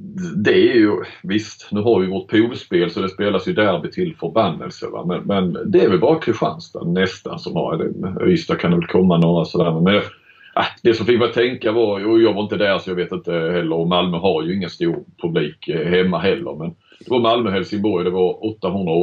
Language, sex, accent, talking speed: Swedish, male, native, 225 wpm